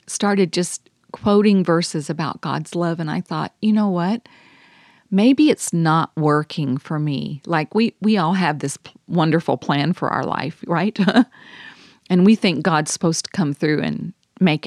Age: 40-59